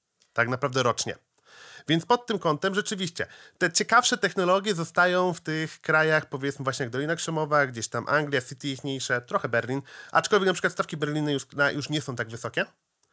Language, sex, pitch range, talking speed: Polish, male, 140-195 Hz, 180 wpm